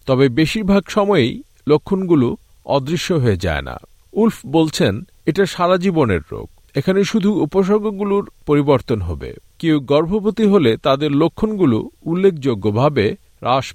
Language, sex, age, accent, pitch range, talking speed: Bengali, male, 50-69, native, 125-190 Hz, 115 wpm